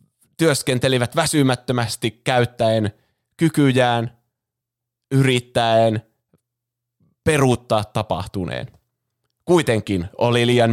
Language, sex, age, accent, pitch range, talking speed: Finnish, male, 20-39, native, 110-130 Hz, 55 wpm